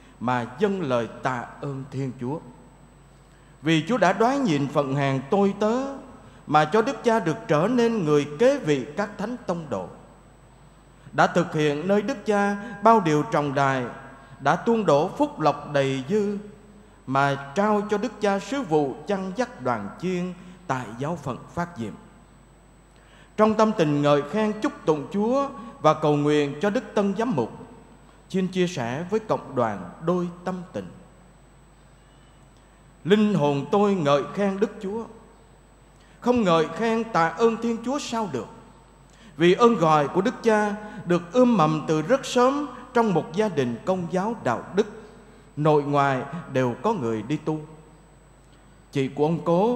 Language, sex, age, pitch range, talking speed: Vietnamese, male, 20-39, 145-215 Hz, 165 wpm